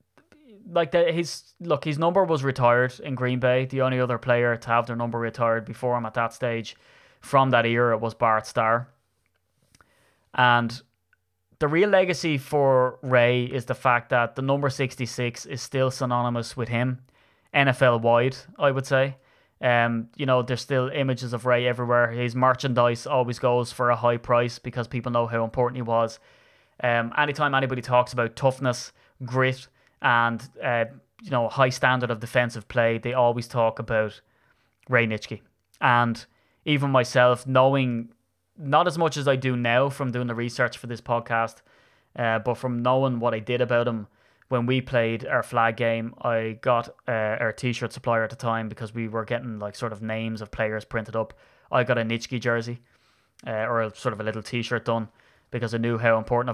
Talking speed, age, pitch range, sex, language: 185 wpm, 20-39, 115-130 Hz, male, English